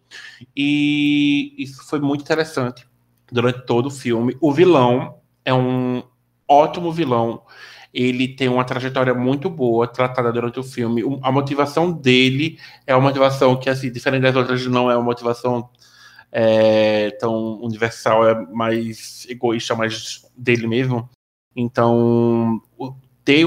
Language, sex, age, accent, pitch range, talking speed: Portuguese, male, 20-39, Brazilian, 120-140 Hz, 135 wpm